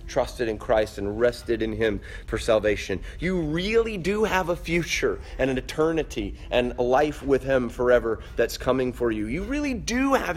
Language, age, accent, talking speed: English, 30-49, American, 185 wpm